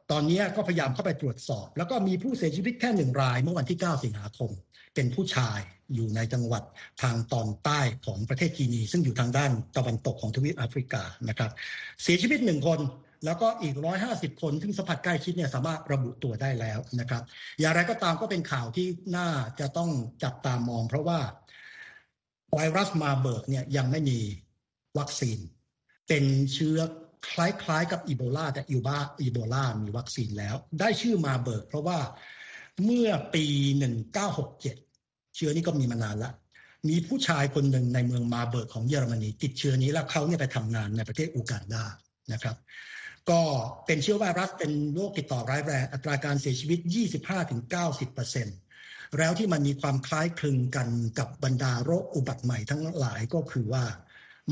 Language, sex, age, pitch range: Thai, male, 60-79, 125-165 Hz